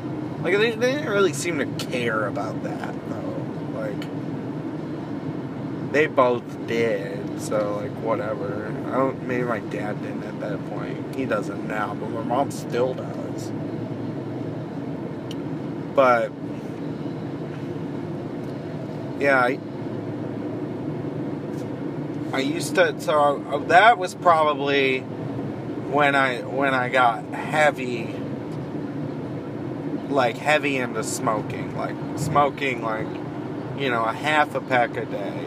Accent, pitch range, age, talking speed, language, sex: American, 135-155 Hz, 20-39, 115 wpm, English, male